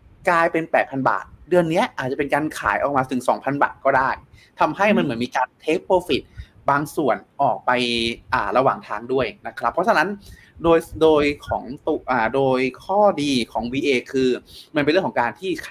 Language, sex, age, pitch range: Thai, male, 20-39, 125-155 Hz